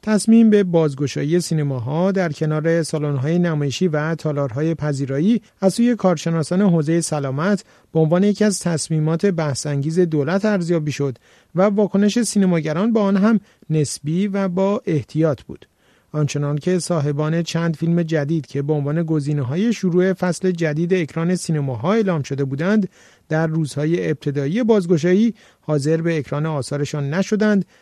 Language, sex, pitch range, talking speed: Persian, male, 150-180 Hz, 135 wpm